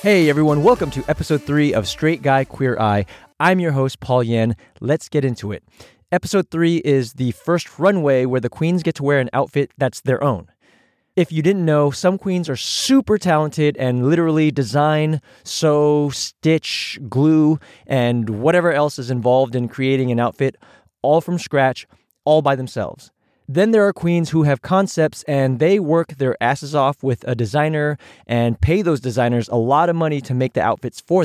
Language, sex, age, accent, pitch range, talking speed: English, male, 20-39, American, 125-165 Hz, 185 wpm